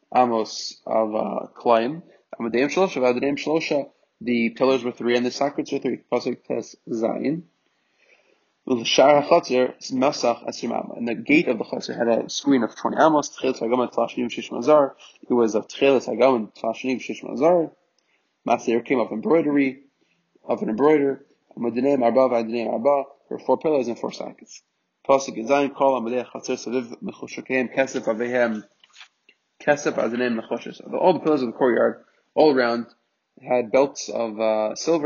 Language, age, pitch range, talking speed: English, 20-39, 120-140 Hz, 135 wpm